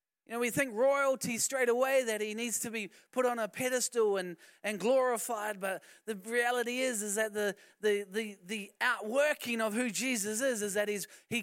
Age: 20-39